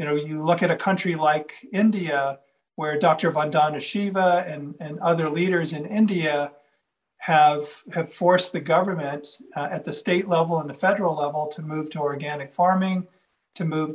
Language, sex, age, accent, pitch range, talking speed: English, male, 50-69, American, 150-180 Hz, 170 wpm